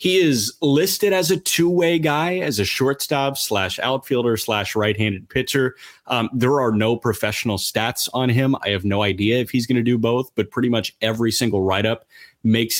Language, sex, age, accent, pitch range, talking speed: English, male, 30-49, American, 110-145 Hz, 190 wpm